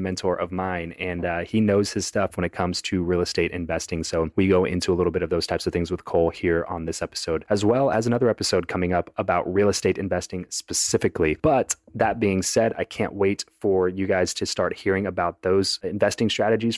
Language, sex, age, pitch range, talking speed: English, male, 30-49, 95-115 Hz, 225 wpm